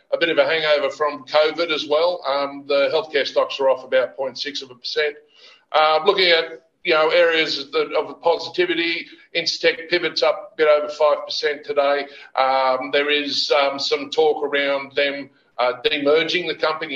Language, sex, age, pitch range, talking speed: English, male, 50-69, 130-170 Hz, 180 wpm